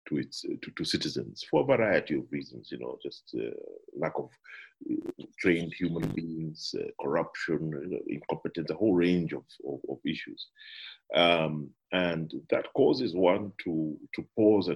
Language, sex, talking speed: English, male, 165 wpm